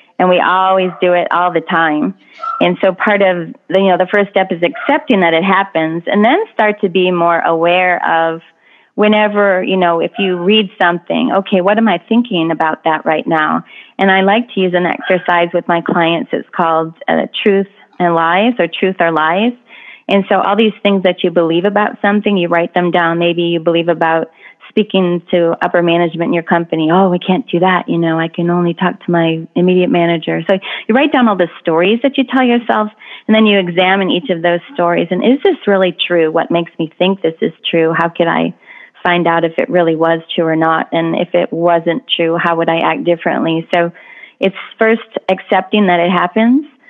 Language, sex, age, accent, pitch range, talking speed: English, female, 30-49, American, 170-195 Hz, 210 wpm